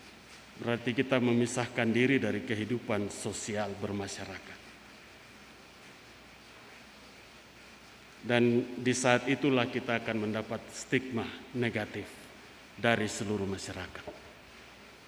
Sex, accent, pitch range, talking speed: male, native, 120-150 Hz, 80 wpm